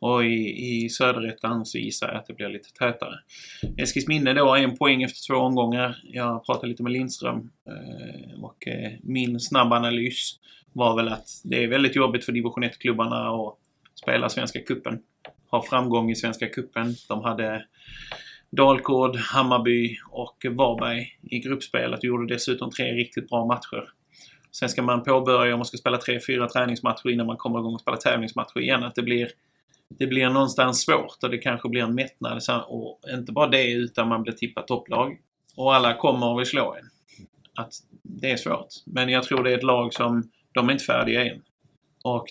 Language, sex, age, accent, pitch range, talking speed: Swedish, male, 30-49, native, 120-130 Hz, 185 wpm